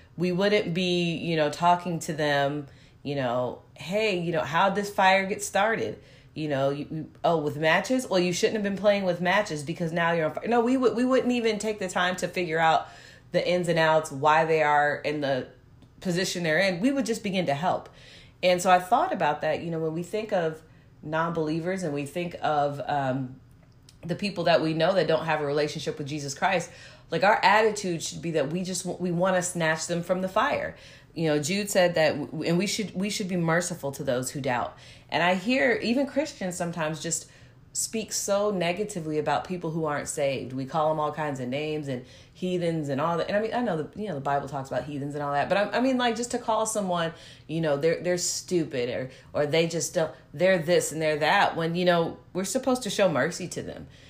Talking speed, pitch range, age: 230 wpm, 145-185 Hz, 30-49